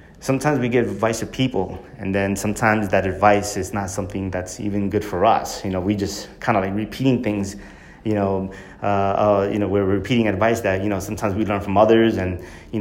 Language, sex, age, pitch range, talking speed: English, male, 30-49, 100-110 Hz, 220 wpm